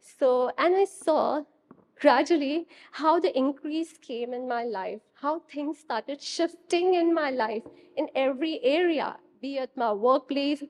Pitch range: 220-285 Hz